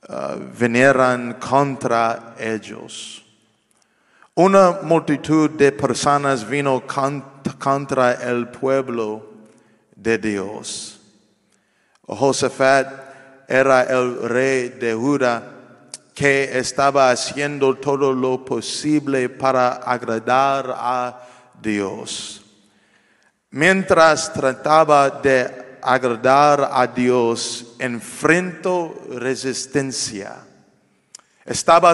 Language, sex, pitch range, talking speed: English, male, 125-145 Hz, 75 wpm